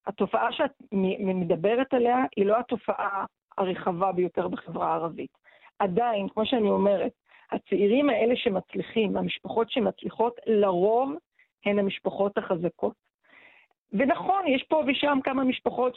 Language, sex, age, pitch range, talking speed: Hebrew, female, 40-59, 205-270 Hz, 115 wpm